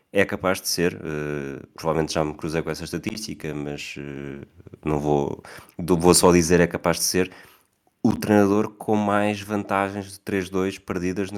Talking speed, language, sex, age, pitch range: 170 wpm, Portuguese, male, 20-39, 85-105 Hz